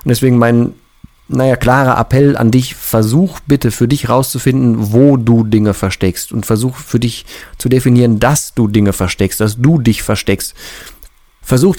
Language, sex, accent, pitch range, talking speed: German, male, German, 115-135 Hz, 165 wpm